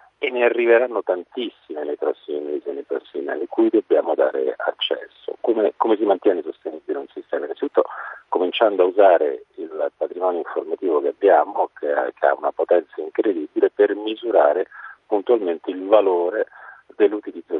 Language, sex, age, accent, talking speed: Italian, male, 40-59, native, 150 wpm